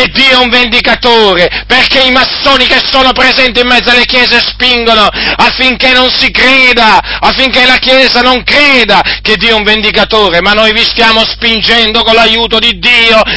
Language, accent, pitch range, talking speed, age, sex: Italian, native, 165-235 Hz, 170 wpm, 40-59, male